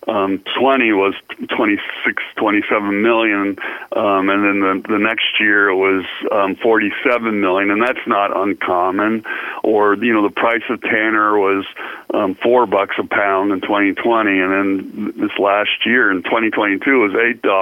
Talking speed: 150 wpm